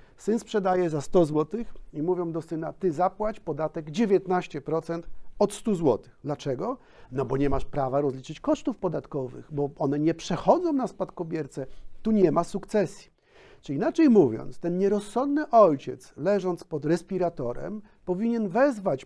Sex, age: male, 50-69